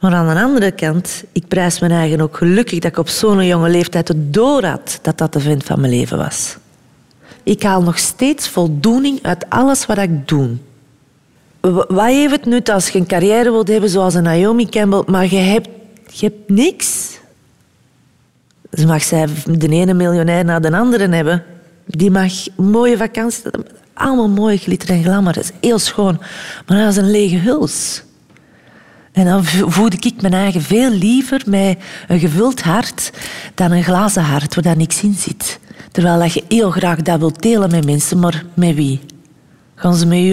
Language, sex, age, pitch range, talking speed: Dutch, female, 40-59, 170-210 Hz, 185 wpm